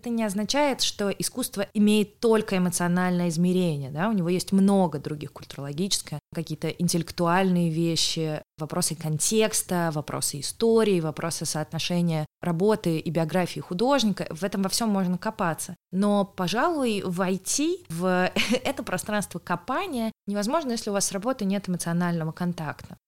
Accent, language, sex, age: native, Russian, female, 20-39